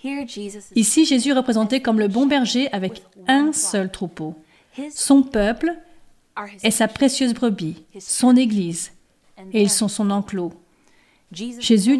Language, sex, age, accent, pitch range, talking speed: French, female, 40-59, French, 205-280 Hz, 130 wpm